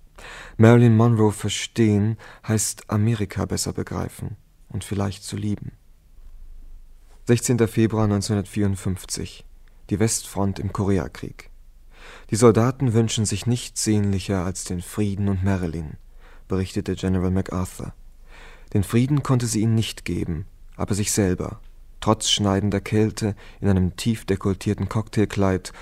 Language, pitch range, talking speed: German, 95-110 Hz, 115 wpm